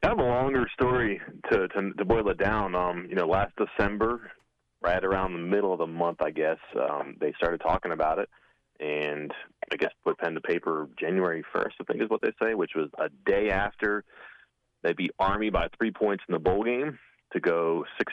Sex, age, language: male, 30-49, English